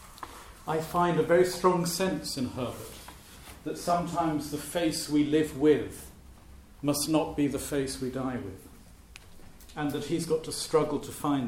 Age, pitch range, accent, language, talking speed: 50-69, 100-150 Hz, British, English, 160 wpm